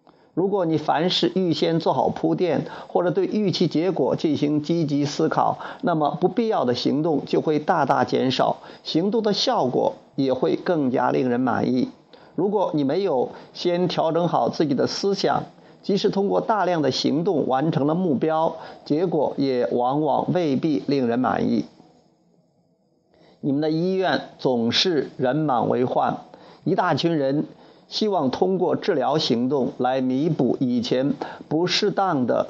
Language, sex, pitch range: Chinese, male, 150-210 Hz